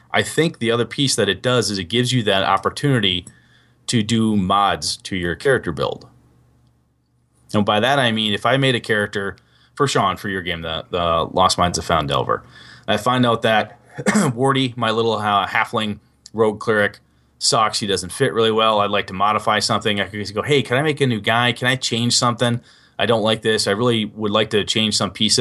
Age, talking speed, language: 30-49, 215 wpm, English